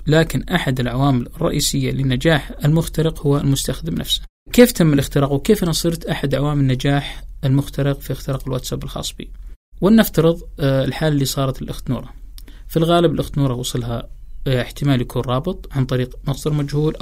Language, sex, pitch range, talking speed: Arabic, male, 130-155 Hz, 140 wpm